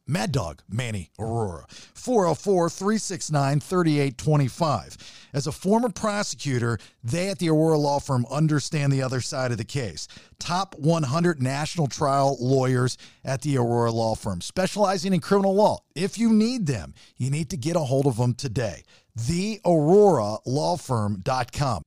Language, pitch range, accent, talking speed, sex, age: English, 125-175 Hz, American, 135 wpm, male, 50-69